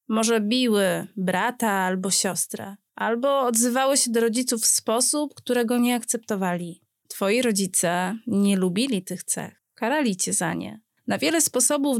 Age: 30-49